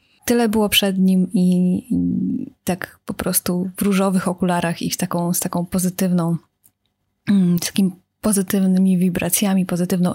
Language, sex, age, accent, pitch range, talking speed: Polish, female, 20-39, native, 180-210 Hz, 135 wpm